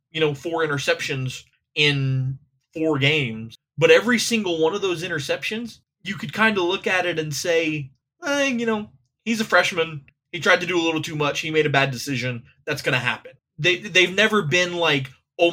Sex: male